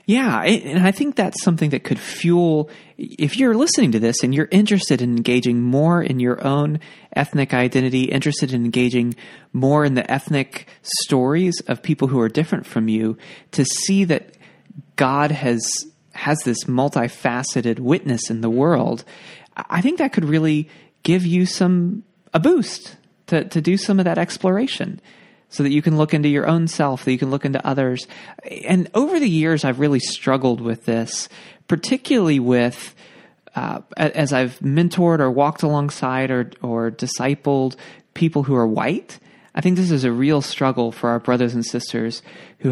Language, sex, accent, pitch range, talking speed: English, male, American, 125-175 Hz, 170 wpm